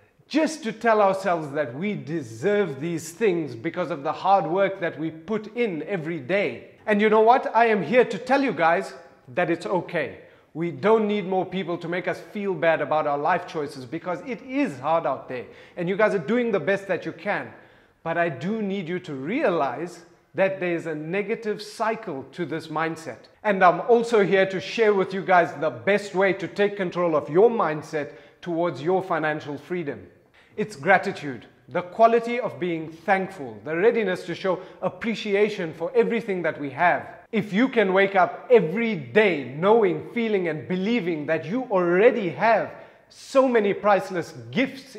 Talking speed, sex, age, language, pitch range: 185 wpm, male, 30-49, English, 165-210 Hz